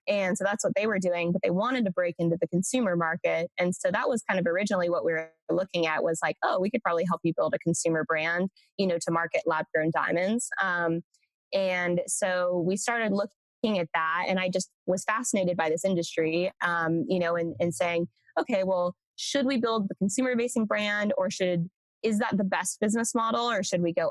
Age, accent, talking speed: 20-39, American, 220 wpm